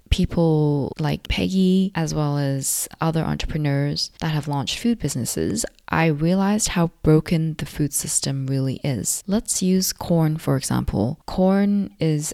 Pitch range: 145-180 Hz